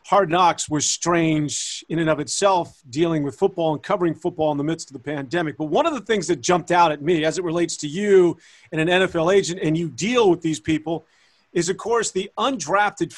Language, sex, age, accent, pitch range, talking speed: English, male, 40-59, American, 160-200 Hz, 230 wpm